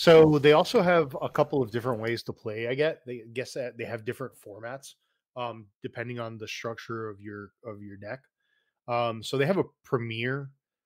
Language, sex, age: English, male, 20-39